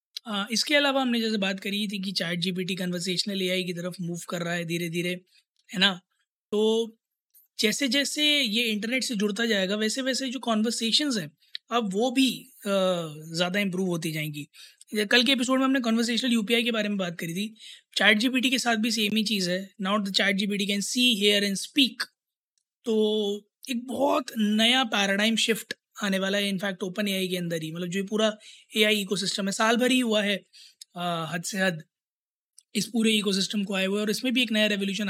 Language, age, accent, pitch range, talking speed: Hindi, 20-39, native, 195-235 Hz, 210 wpm